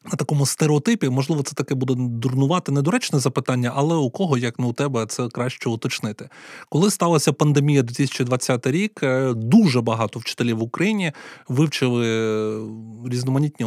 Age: 20-39